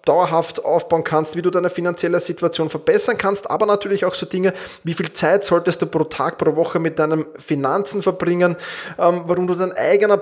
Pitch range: 140-180 Hz